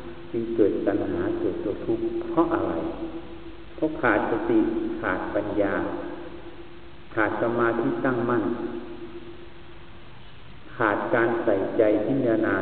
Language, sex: Thai, male